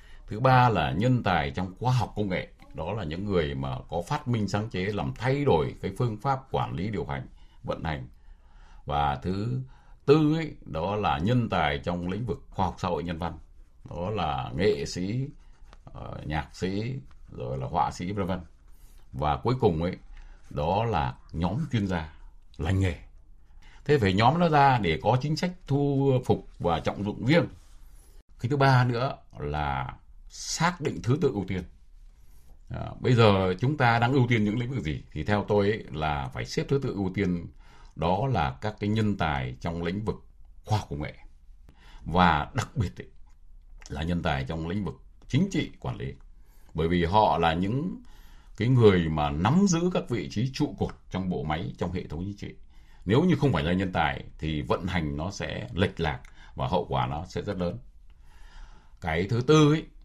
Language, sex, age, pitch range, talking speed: Vietnamese, male, 60-79, 70-120 Hz, 195 wpm